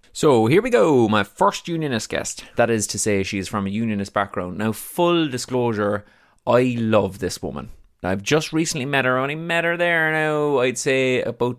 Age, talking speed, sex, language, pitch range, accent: 20-39, 200 wpm, male, English, 105-130 Hz, Irish